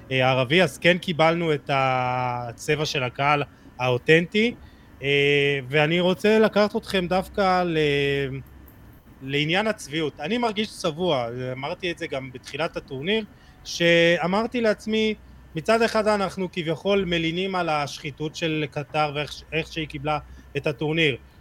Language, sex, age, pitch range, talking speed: Hebrew, male, 20-39, 140-185 Hz, 120 wpm